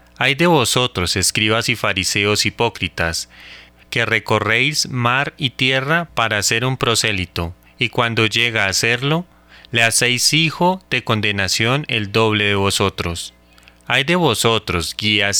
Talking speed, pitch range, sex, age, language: 135 wpm, 90-130 Hz, male, 30-49, Spanish